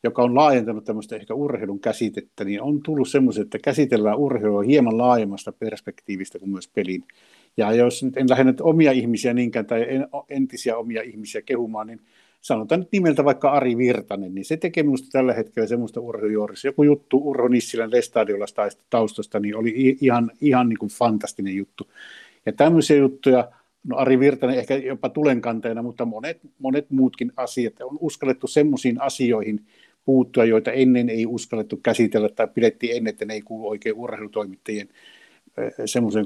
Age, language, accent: 60-79, Finnish, native